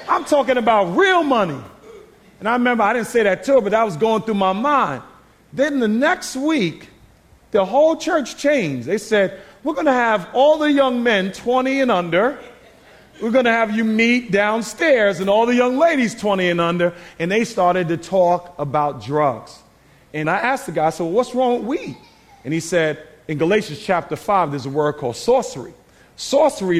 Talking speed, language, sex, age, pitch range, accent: 200 wpm, English, male, 40-59, 180-250 Hz, American